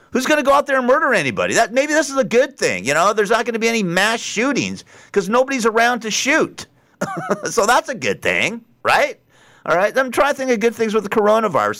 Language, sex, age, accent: English, male, 50-69, American